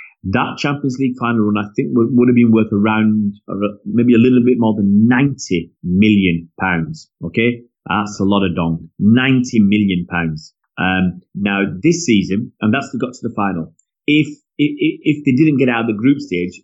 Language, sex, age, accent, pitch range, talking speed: English, male, 30-49, British, 100-125 Hz, 195 wpm